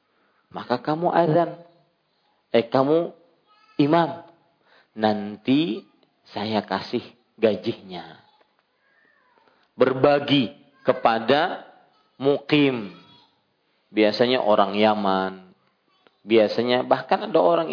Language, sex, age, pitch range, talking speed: Malay, male, 40-59, 110-170 Hz, 70 wpm